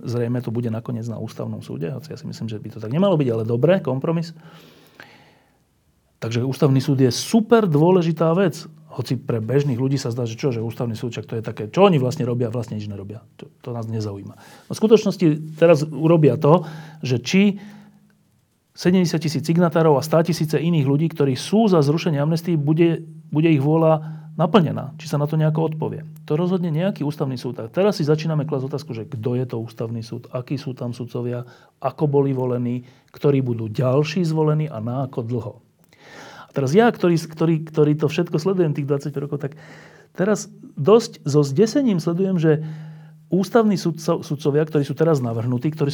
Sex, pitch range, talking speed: male, 125-165 Hz, 190 wpm